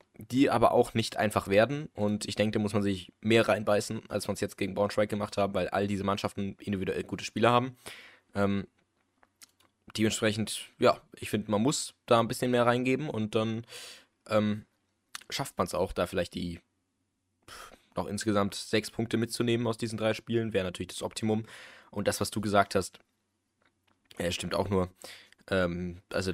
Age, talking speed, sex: 20-39, 180 wpm, male